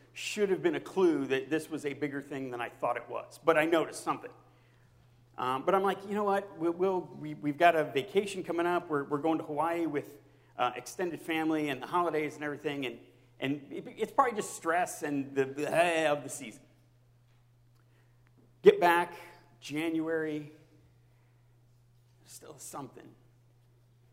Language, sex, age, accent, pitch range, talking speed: English, male, 50-69, American, 125-185 Hz, 170 wpm